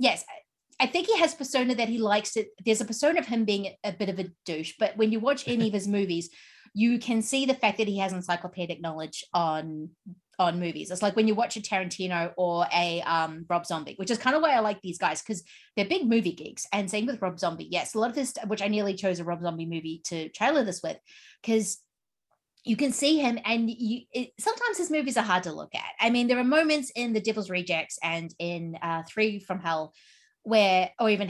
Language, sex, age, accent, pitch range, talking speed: English, female, 30-49, Australian, 175-230 Hz, 235 wpm